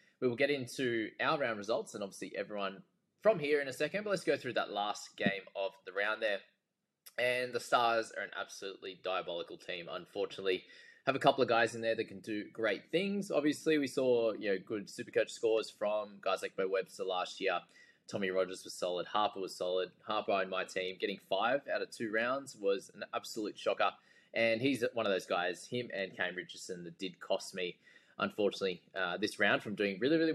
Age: 20-39